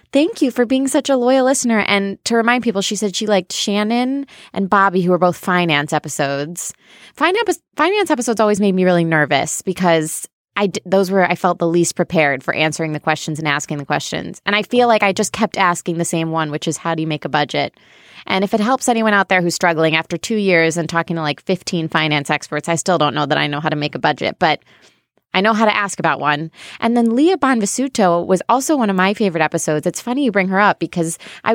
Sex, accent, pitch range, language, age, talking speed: female, American, 165-215 Hz, English, 20-39, 235 wpm